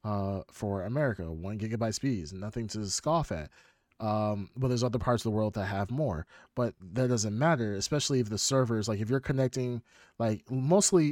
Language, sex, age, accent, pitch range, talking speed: English, male, 30-49, American, 105-130 Hz, 190 wpm